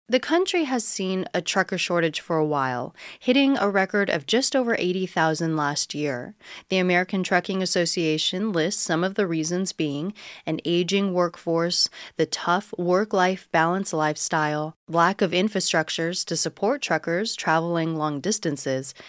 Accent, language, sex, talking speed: American, English, female, 145 wpm